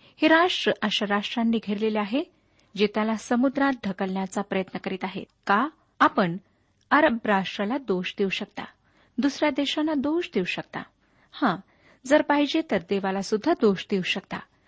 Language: Marathi